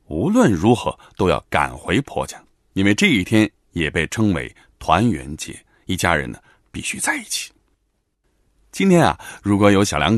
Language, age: Chinese, 30-49